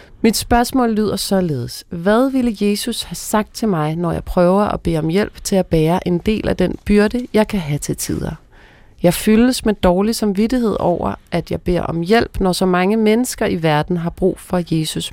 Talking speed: 205 wpm